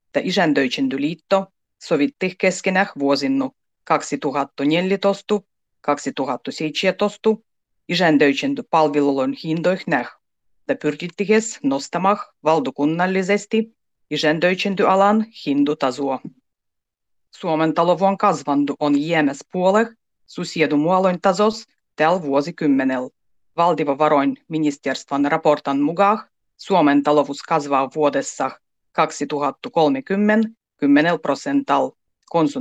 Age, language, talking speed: 30-49, Finnish, 80 wpm